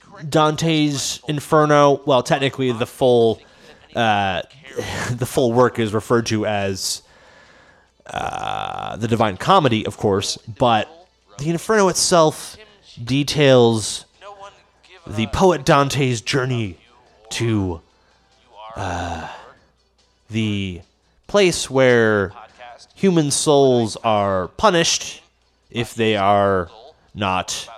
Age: 30-49